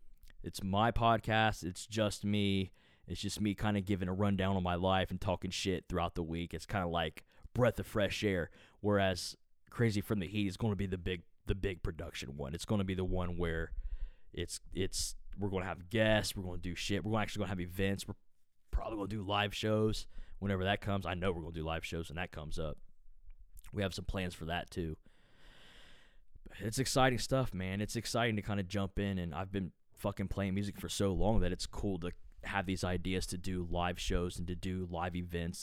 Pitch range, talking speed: 85-100 Hz, 230 wpm